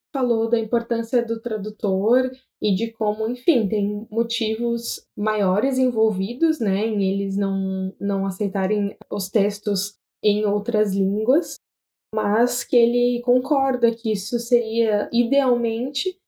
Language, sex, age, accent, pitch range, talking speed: Portuguese, female, 10-29, Brazilian, 200-250 Hz, 120 wpm